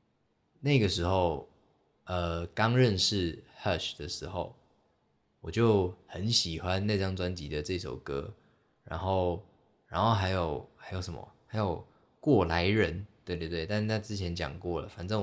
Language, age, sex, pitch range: Chinese, 20-39, male, 85-105 Hz